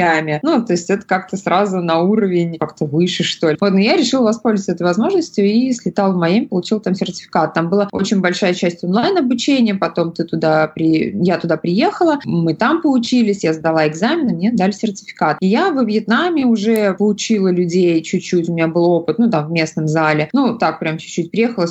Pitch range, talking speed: 170-225 Hz, 195 wpm